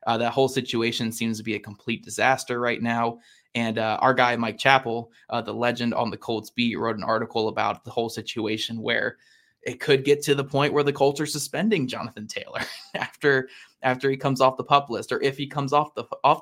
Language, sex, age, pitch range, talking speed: English, male, 20-39, 120-140 Hz, 225 wpm